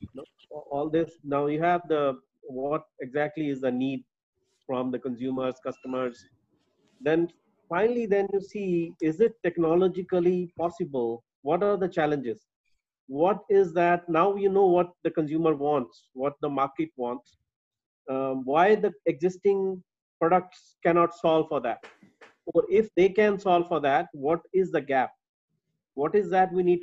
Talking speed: 150 wpm